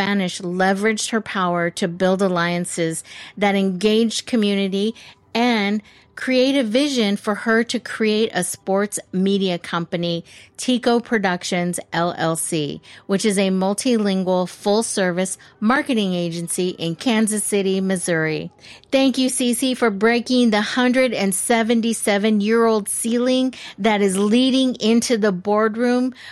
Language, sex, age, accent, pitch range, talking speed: English, female, 50-69, American, 185-225 Hz, 115 wpm